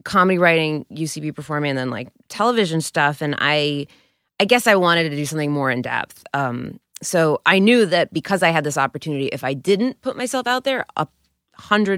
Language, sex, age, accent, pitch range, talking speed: English, female, 20-39, American, 145-190 Hz, 200 wpm